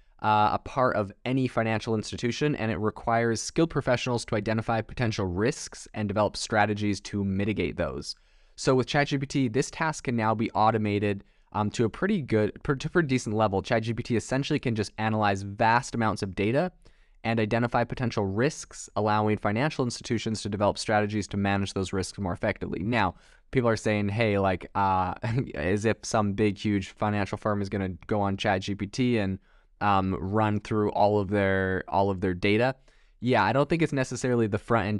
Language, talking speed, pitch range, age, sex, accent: English, 180 wpm, 100-120 Hz, 20-39, male, American